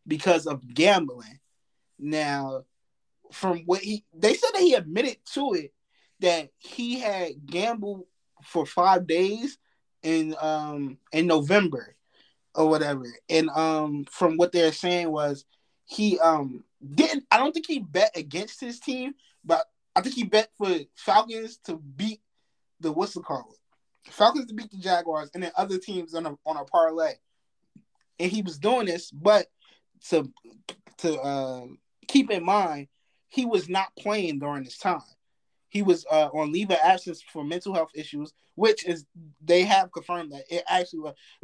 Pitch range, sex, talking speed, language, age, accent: 150-200 Hz, male, 160 wpm, English, 20-39, American